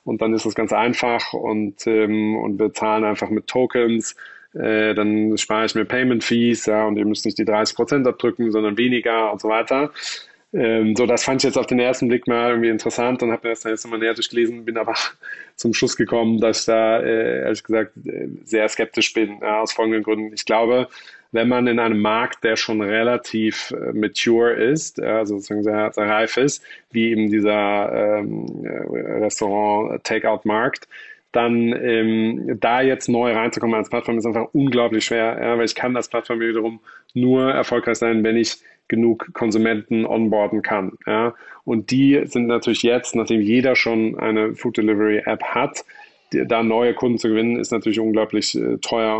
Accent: German